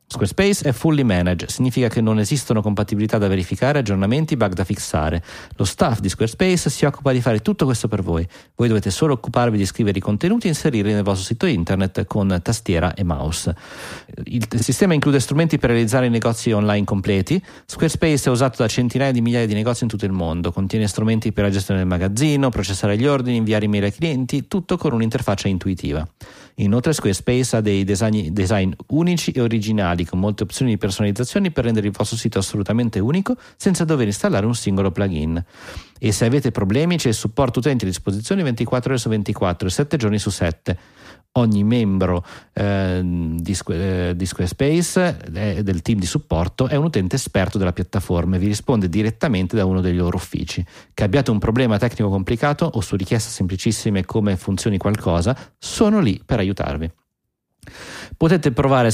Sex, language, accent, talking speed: male, Italian, native, 180 wpm